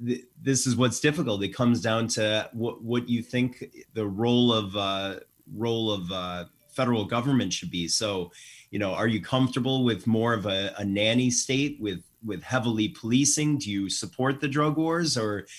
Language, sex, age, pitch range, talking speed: English, male, 30-49, 105-125 Hz, 180 wpm